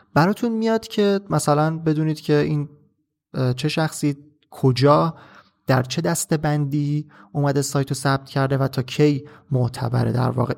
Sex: male